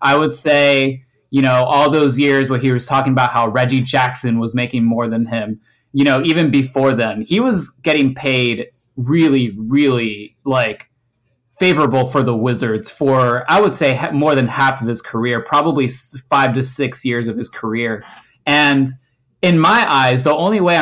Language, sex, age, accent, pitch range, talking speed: English, male, 20-39, American, 120-145 Hz, 180 wpm